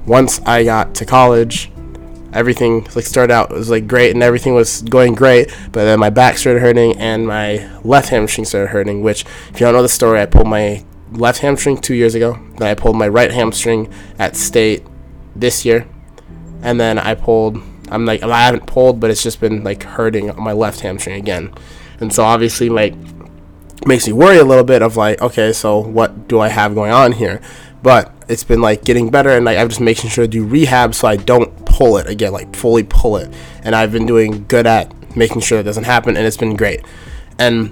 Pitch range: 105-120 Hz